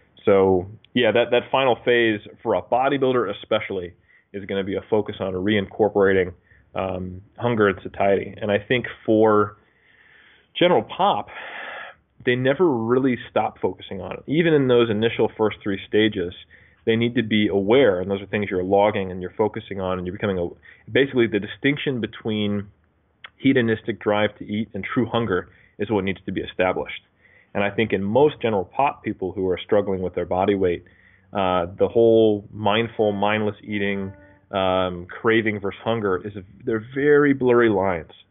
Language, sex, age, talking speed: English, male, 30-49, 170 wpm